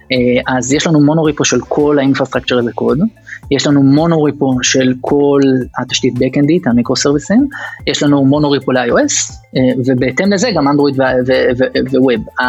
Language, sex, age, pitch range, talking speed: Hebrew, male, 30-49, 130-155 Hz, 120 wpm